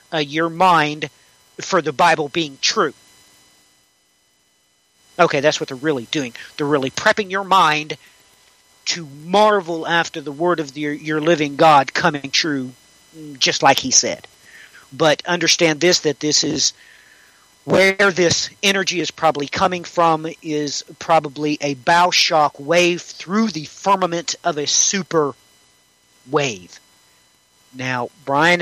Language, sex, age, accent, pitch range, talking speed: English, male, 40-59, American, 145-170 Hz, 130 wpm